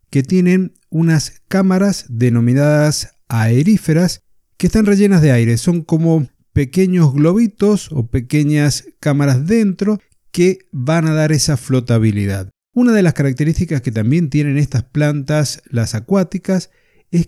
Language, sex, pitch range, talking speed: Spanish, male, 120-170 Hz, 130 wpm